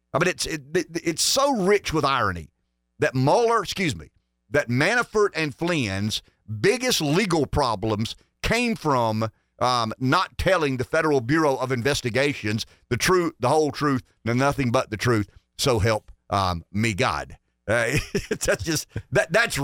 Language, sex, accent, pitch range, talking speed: English, male, American, 110-155 Hz, 155 wpm